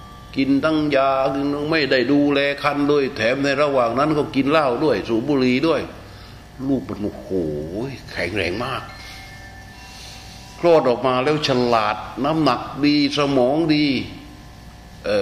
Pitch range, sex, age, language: 105-135 Hz, male, 60-79, Thai